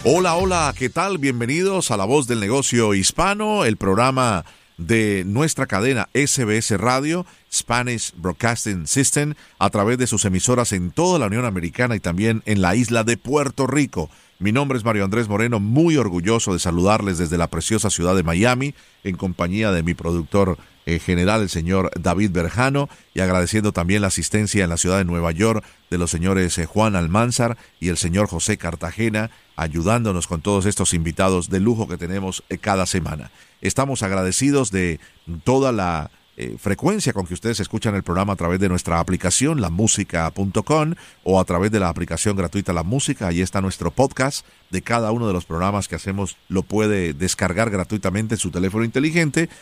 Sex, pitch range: male, 90-120 Hz